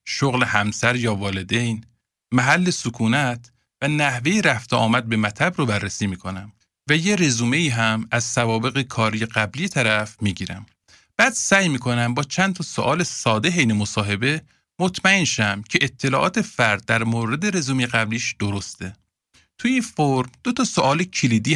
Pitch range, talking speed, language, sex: 110-165 Hz, 145 wpm, Persian, male